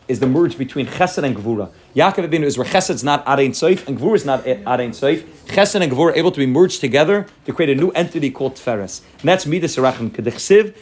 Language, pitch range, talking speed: English, 135-200 Hz, 225 wpm